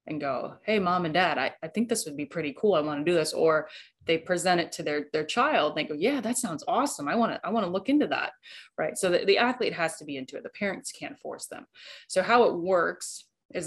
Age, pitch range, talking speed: 20-39, 160-195 Hz, 270 wpm